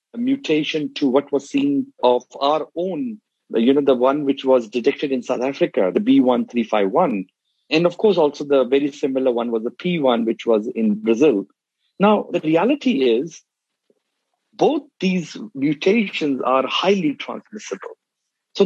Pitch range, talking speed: 125-195 Hz, 150 wpm